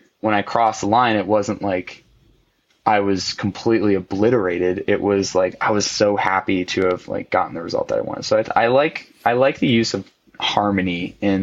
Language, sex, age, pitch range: English, male, 20-39, 95-105 Hz